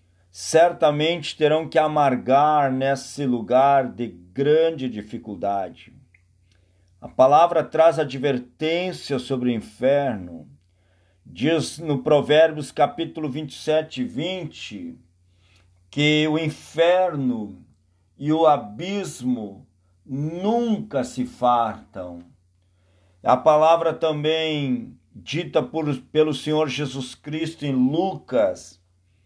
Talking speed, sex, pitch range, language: 85 wpm, male, 110-155 Hz, Portuguese